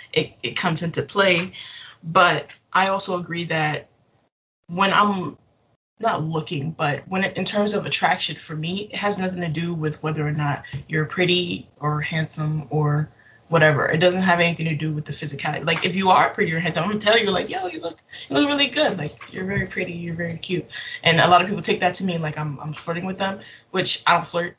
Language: English